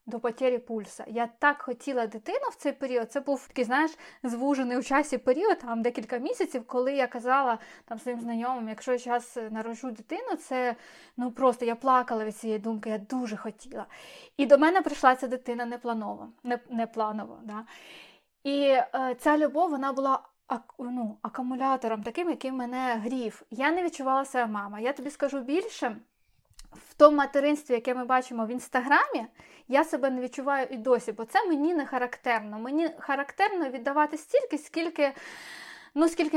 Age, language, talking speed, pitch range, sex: 20-39, Ukrainian, 155 wpm, 240-295 Hz, female